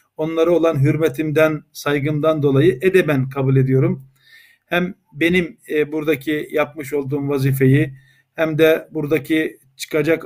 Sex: male